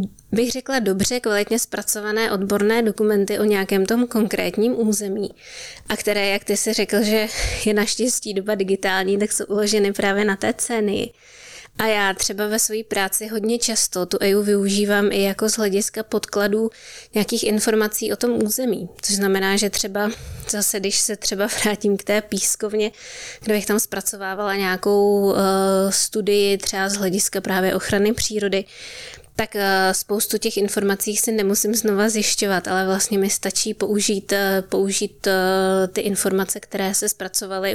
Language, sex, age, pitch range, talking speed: Czech, female, 20-39, 195-215 Hz, 150 wpm